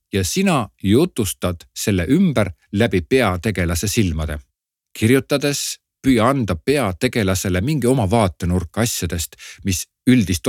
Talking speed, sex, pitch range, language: 105 wpm, male, 90-125 Hz, Czech